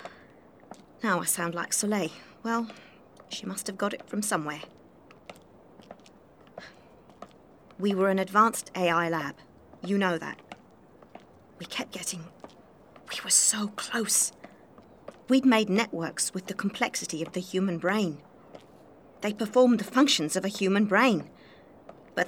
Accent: British